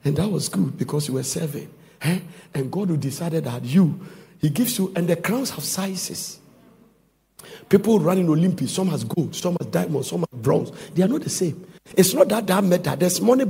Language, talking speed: English, 220 wpm